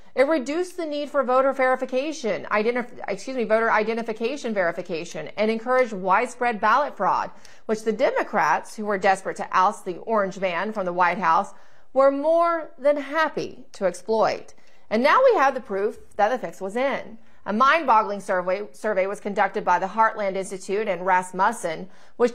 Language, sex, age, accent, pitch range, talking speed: English, female, 30-49, American, 200-275 Hz, 170 wpm